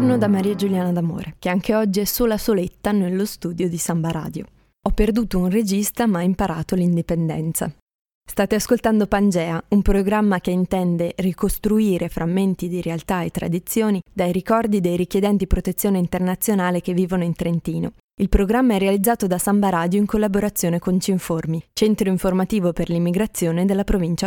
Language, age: Italian, 20-39